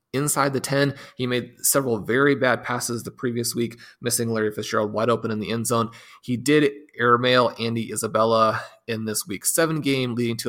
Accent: American